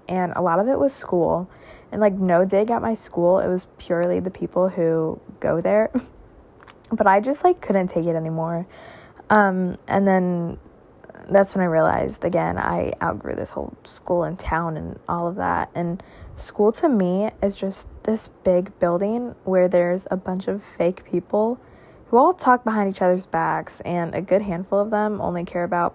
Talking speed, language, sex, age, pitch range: 185 wpm, English, female, 20-39, 175-215 Hz